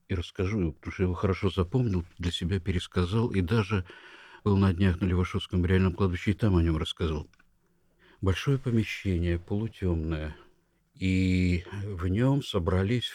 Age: 50-69